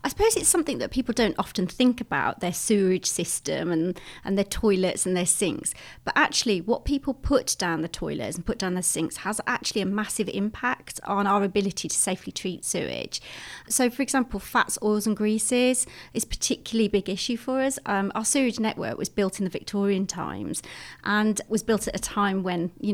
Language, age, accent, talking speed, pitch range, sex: English, 30-49, British, 200 wpm, 185-230 Hz, female